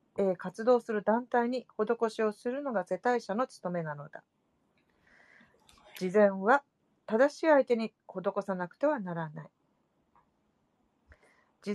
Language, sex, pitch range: Japanese, female, 190-260 Hz